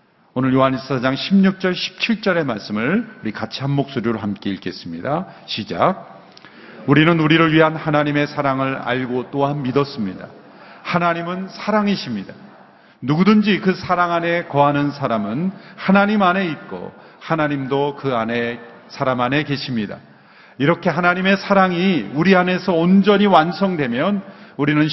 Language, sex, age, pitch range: Korean, male, 40-59, 140-195 Hz